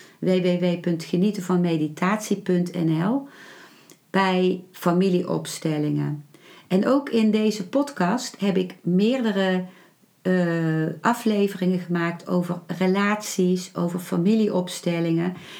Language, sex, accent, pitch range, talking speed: Dutch, female, Dutch, 170-210 Hz, 70 wpm